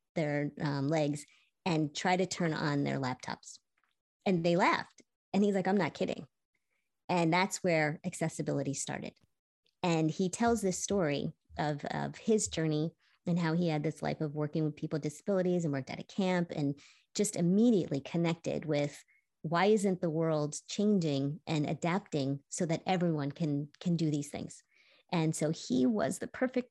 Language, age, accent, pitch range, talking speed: English, 30-49, American, 155-190 Hz, 170 wpm